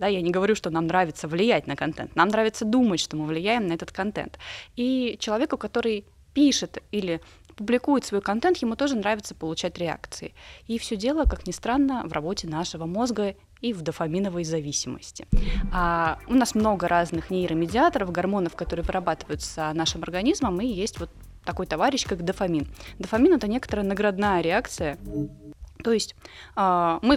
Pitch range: 165-220 Hz